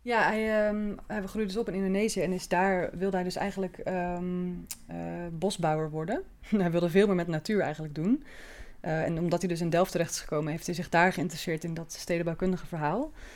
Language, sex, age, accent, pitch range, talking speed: Dutch, female, 20-39, Dutch, 165-190 Hz, 200 wpm